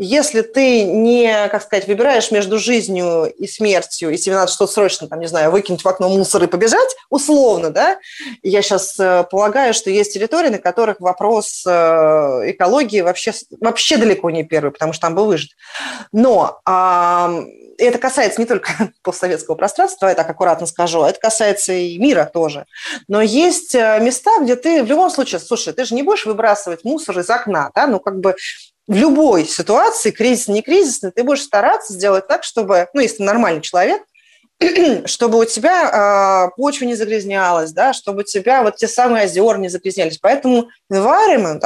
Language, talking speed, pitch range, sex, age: Russian, 165 wpm, 185-255 Hz, female, 30-49